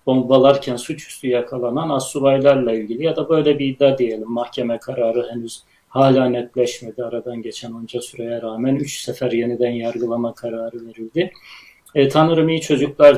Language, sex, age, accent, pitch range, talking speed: Turkish, male, 40-59, native, 120-140 Hz, 140 wpm